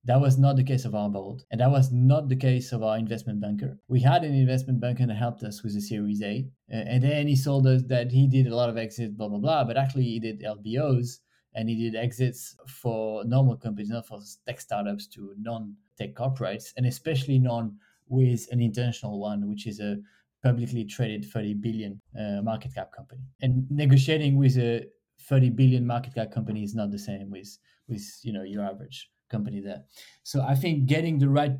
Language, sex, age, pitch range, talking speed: English, male, 20-39, 110-135 Hz, 205 wpm